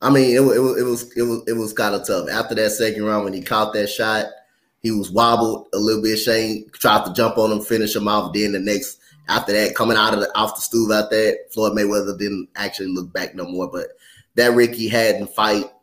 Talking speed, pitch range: 250 wpm, 105-125 Hz